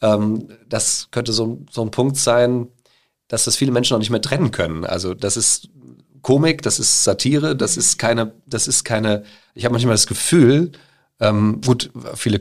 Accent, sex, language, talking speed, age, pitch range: German, male, German, 180 wpm, 40-59, 95-115 Hz